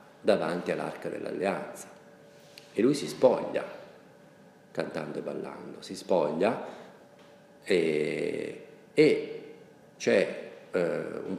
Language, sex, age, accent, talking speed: Italian, male, 40-59, native, 90 wpm